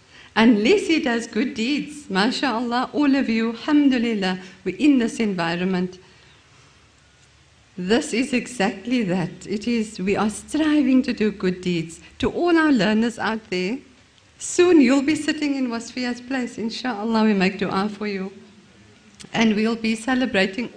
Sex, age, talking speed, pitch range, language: female, 50-69, 145 wpm, 195-255 Hz, English